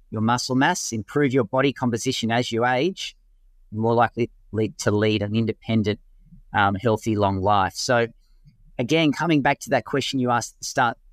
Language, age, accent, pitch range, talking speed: English, 40-59, Australian, 110-140 Hz, 180 wpm